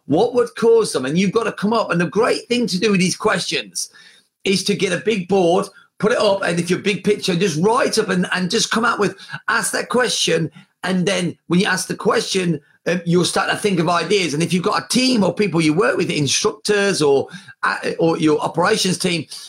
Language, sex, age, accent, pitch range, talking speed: English, male, 30-49, British, 165-205 Hz, 240 wpm